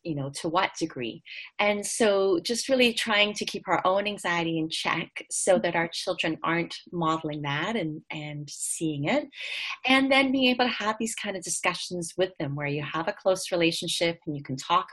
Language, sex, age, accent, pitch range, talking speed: English, female, 30-49, American, 165-190 Hz, 200 wpm